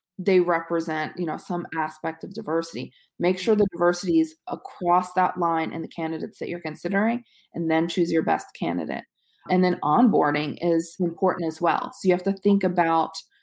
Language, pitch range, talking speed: English, 165-190 Hz, 185 wpm